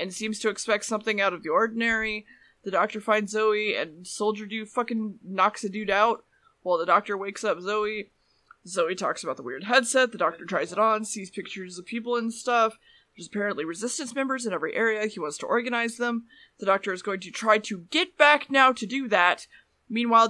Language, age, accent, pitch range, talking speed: English, 20-39, American, 200-245 Hz, 205 wpm